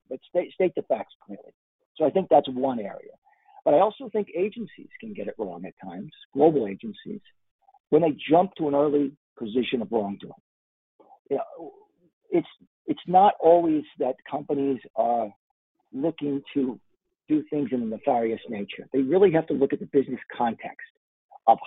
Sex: male